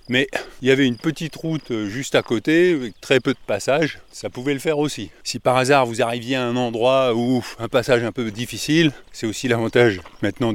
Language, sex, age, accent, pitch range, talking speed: French, male, 30-49, French, 110-140 Hz, 215 wpm